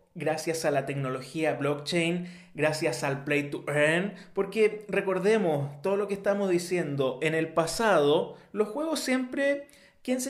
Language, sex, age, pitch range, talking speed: Spanish, male, 30-49, 150-195 Hz, 145 wpm